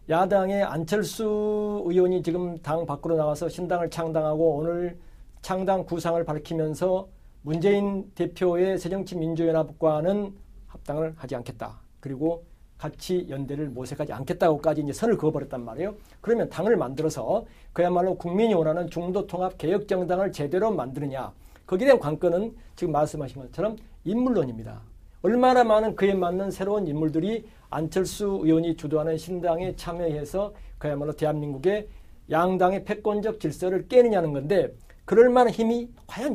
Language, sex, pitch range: Korean, male, 155-195 Hz